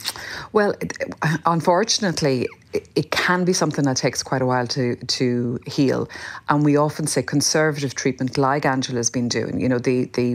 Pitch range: 130-150 Hz